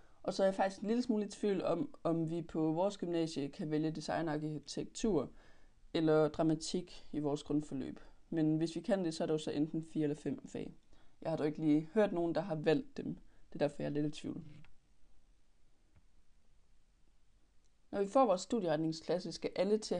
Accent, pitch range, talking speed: native, 150-190 Hz, 190 wpm